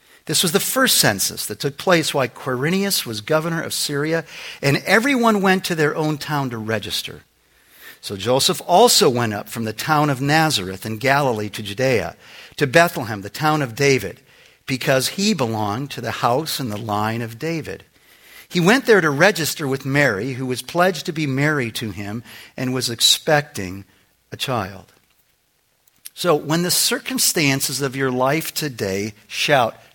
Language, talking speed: English, 165 wpm